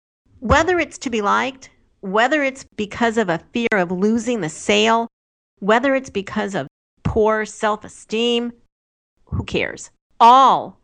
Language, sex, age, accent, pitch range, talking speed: English, female, 50-69, American, 205-260 Hz, 135 wpm